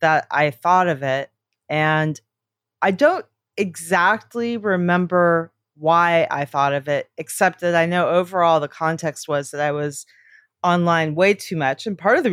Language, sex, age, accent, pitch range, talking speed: English, female, 30-49, American, 150-185 Hz, 165 wpm